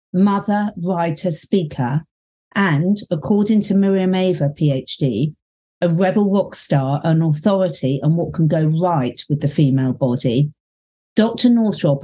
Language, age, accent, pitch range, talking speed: English, 50-69, British, 150-190 Hz, 130 wpm